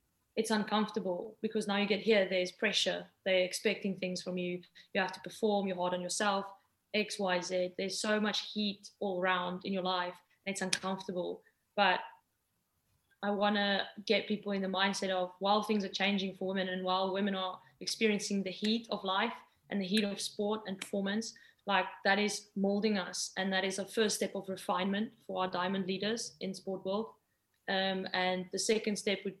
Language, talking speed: English, 190 wpm